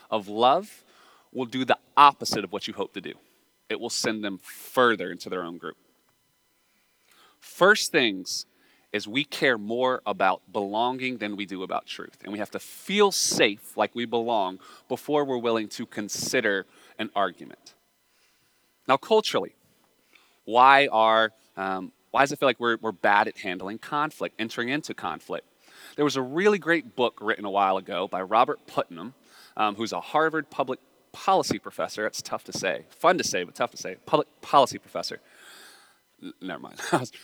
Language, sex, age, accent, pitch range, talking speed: English, male, 30-49, American, 110-145 Hz, 170 wpm